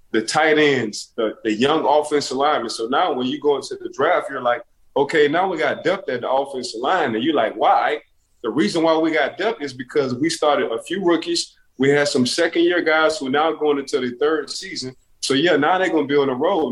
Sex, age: male, 20-39